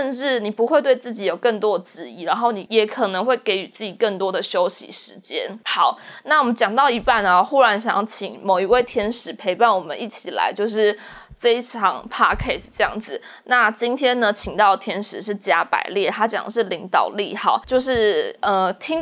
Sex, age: female, 20-39